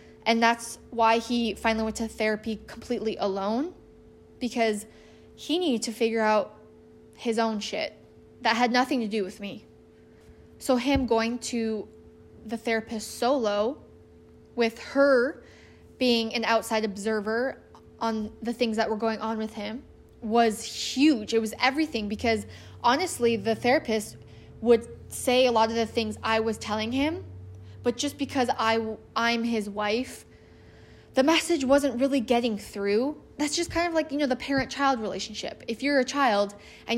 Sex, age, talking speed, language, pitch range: female, 10-29, 155 wpm, English, 215-255 Hz